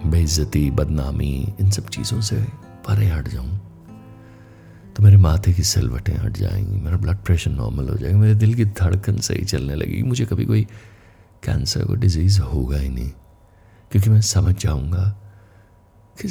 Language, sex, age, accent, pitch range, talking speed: Hindi, male, 60-79, native, 95-110 Hz, 160 wpm